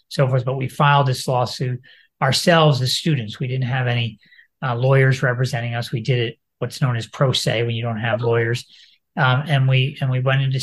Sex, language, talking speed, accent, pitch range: male, English, 215 wpm, American, 115-140 Hz